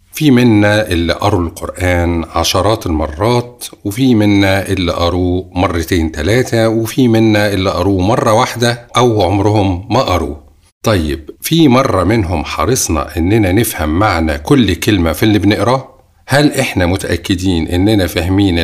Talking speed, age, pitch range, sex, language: 130 wpm, 50-69, 90-115 Hz, male, Arabic